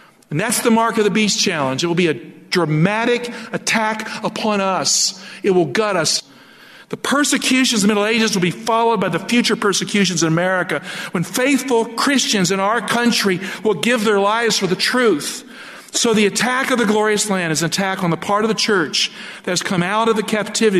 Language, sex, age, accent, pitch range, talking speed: English, male, 50-69, American, 175-225 Hz, 205 wpm